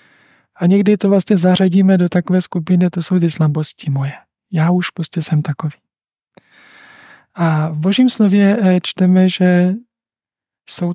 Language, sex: Czech, male